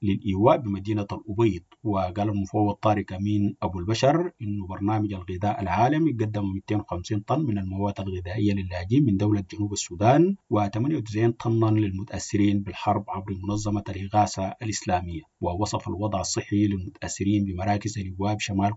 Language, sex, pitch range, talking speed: English, male, 100-110 Hz, 125 wpm